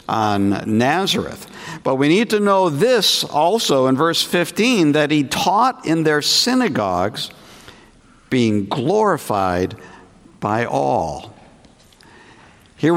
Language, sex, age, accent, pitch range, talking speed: English, male, 60-79, American, 120-185 Hz, 105 wpm